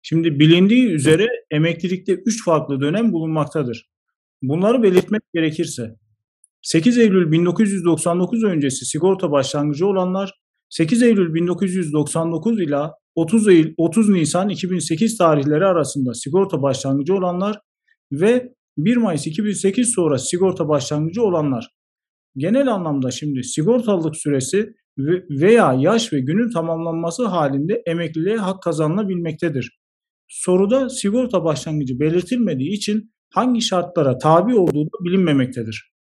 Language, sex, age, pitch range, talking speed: Turkish, male, 40-59, 150-210 Hz, 105 wpm